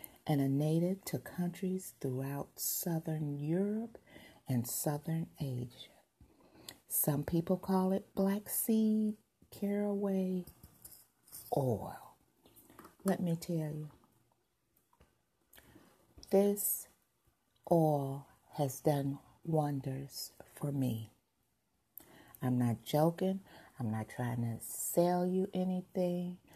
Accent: American